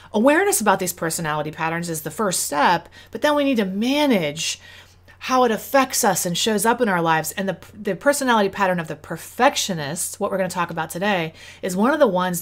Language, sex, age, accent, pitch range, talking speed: English, female, 30-49, American, 165-230 Hz, 220 wpm